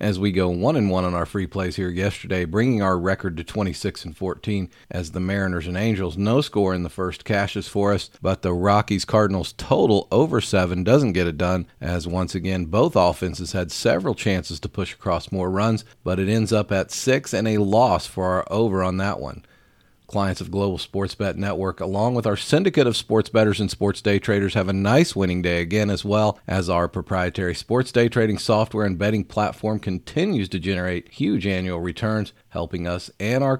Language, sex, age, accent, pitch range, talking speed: English, male, 40-59, American, 90-105 Hz, 205 wpm